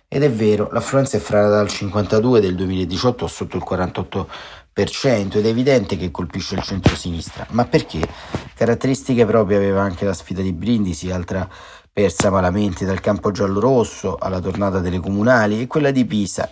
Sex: male